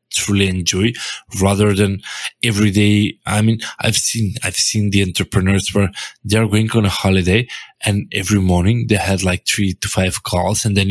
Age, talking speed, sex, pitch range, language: 20-39, 180 wpm, male, 95-110 Hz, English